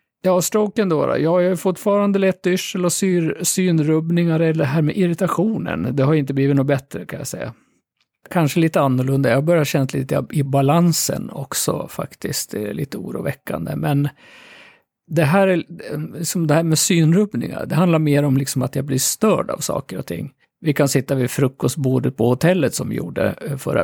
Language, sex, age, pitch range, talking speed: Swedish, male, 50-69, 135-170 Hz, 180 wpm